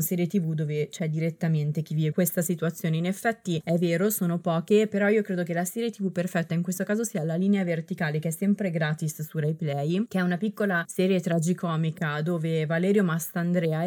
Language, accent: Italian, native